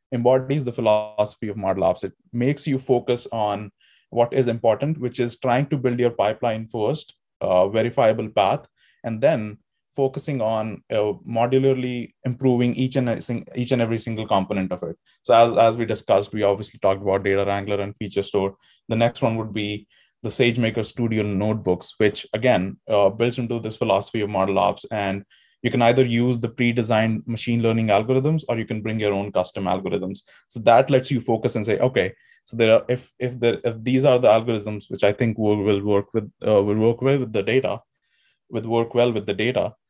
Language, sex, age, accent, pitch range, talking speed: English, male, 20-39, Indian, 105-125 Hz, 195 wpm